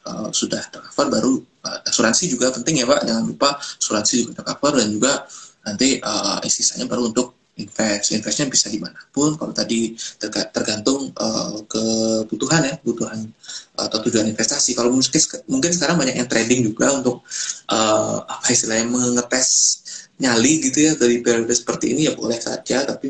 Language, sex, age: Indonesian, male, 20-39